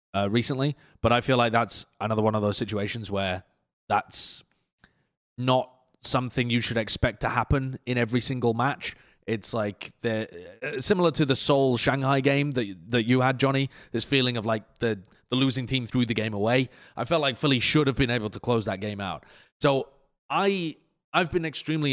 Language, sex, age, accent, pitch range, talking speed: English, male, 30-49, British, 115-140 Hz, 190 wpm